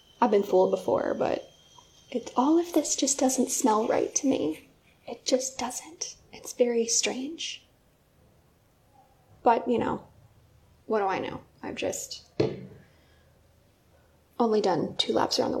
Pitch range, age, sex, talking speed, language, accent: 230-315 Hz, 10-29, female, 140 wpm, English, American